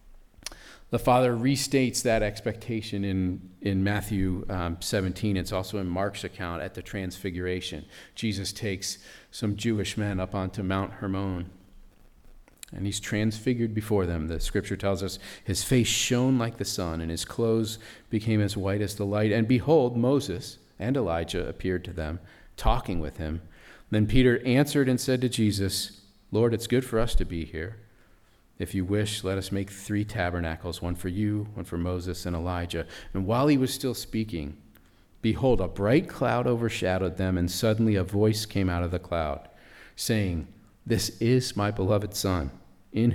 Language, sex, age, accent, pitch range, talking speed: English, male, 40-59, American, 90-110 Hz, 170 wpm